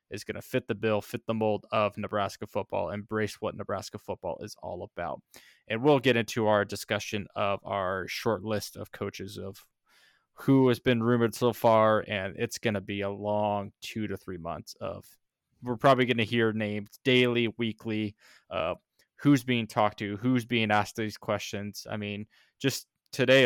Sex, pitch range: male, 105-120 Hz